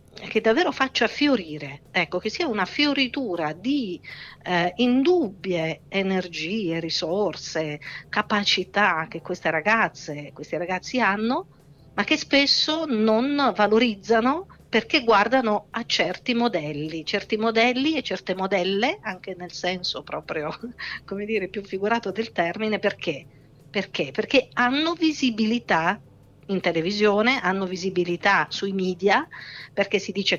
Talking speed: 120 wpm